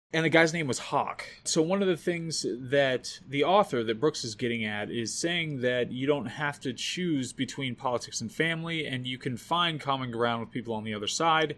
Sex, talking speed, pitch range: male, 225 wpm, 120-155 Hz